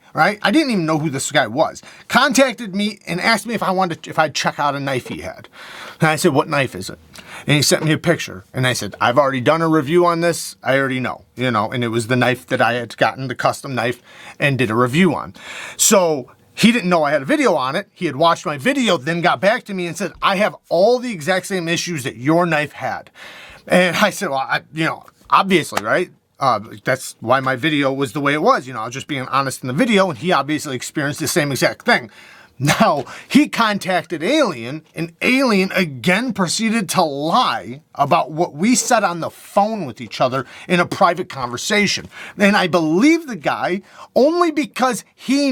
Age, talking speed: 30-49, 230 wpm